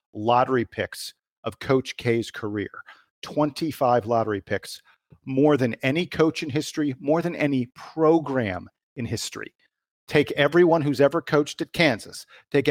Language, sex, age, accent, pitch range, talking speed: English, male, 50-69, American, 115-145 Hz, 135 wpm